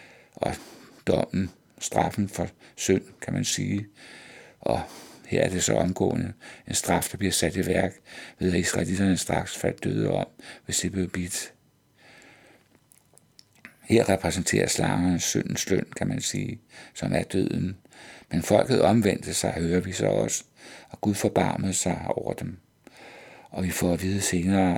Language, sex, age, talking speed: Danish, male, 60-79, 155 wpm